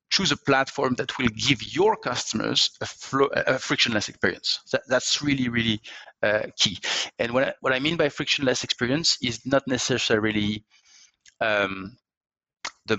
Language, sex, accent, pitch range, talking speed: English, male, French, 110-135 Hz, 155 wpm